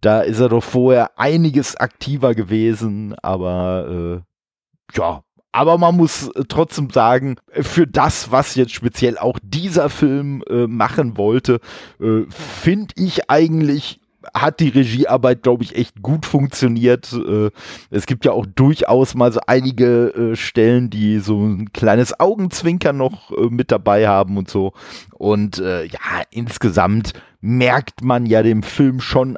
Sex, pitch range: male, 105-140 Hz